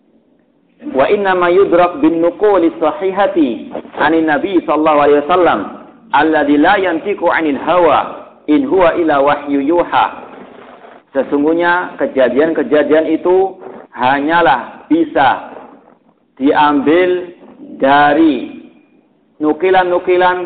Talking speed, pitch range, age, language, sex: 40 wpm, 150-240 Hz, 50-69, Indonesian, male